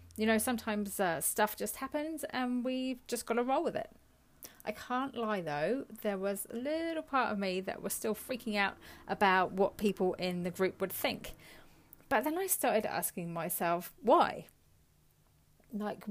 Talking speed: 175 wpm